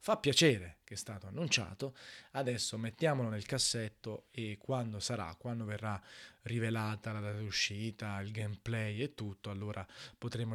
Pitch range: 110-140 Hz